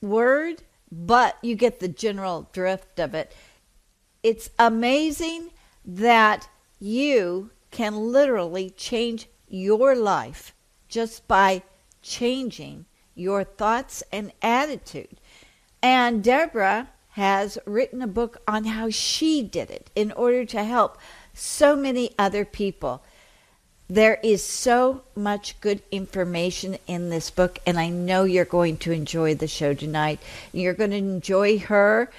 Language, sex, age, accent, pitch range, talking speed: English, female, 50-69, American, 185-235 Hz, 125 wpm